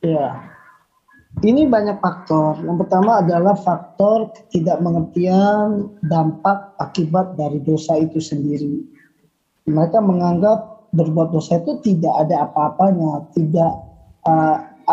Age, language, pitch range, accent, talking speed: 20-39, Indonesian, 170-215 Hz, native, 105 wpm